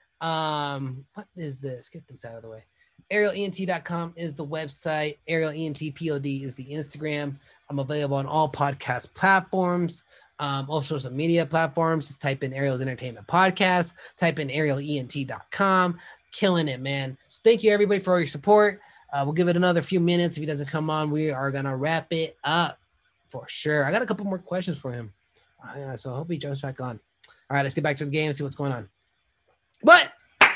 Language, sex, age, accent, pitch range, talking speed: English, male, 20-39, American, 140-180 Hz, 200 wpm